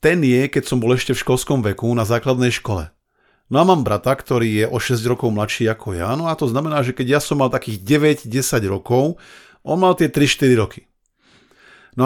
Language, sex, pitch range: Slovak, male, 115-145 Hz